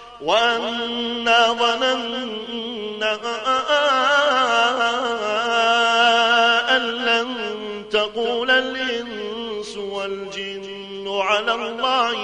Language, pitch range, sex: Arabic, 215-265 Hz, male